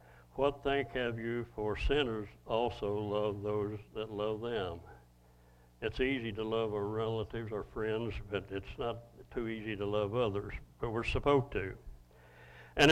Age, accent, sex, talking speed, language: 60-79, American, male, 155 wpm, English